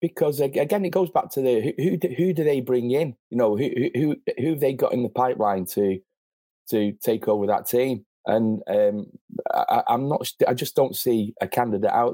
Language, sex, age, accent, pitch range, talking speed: English, male, 30-49, British, 105-170 Hz, 215 wpm